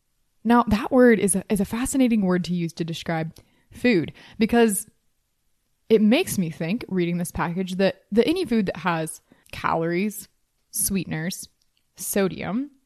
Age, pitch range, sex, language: 20-39, 175-215 Hz, female, English